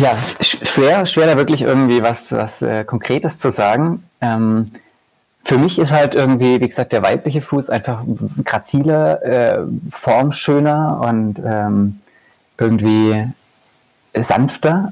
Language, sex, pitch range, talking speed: German, male, 110-145 Hz, 120 wpm